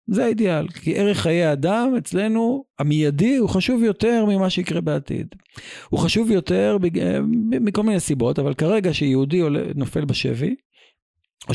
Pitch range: 140-200 Hz